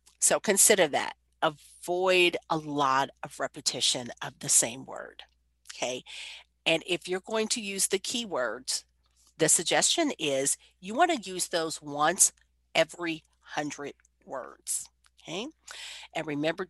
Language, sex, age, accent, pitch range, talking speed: English, female, 50-69, American, 150-210 Hz, 130 wpm